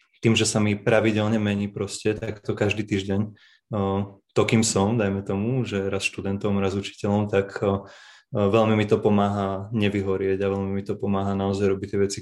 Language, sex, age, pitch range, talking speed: Slovak, male, 20-39, 100-110 Hz, 175 wpm